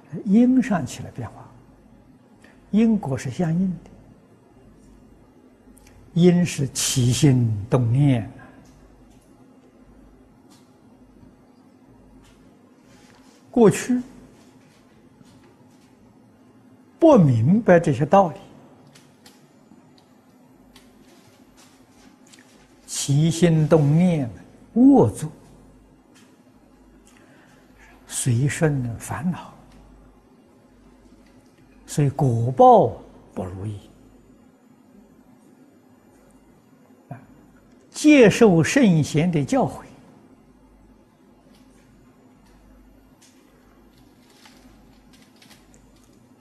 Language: Chinese